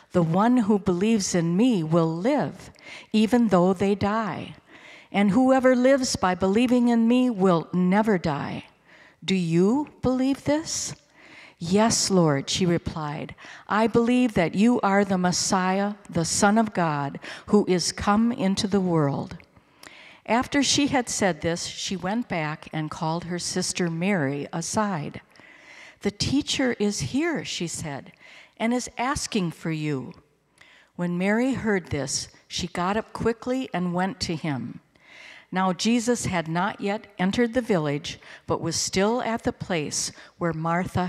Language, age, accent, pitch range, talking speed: English, 60-79, American, 170-235 Hz, 145 wpm